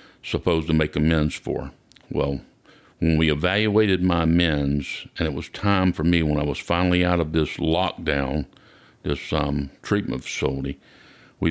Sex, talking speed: male, 155 wpm